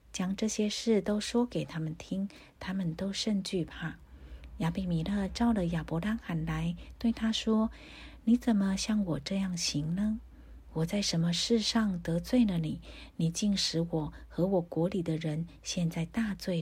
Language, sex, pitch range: Chinese, female, 155-200 Hz